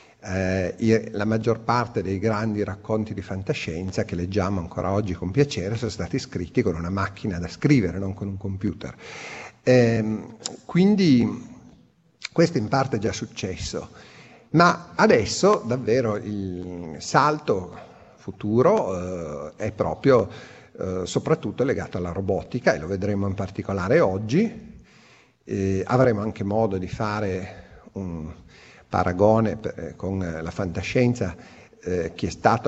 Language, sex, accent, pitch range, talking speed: Italian, male, native, 95-110 Hz, 130 wpm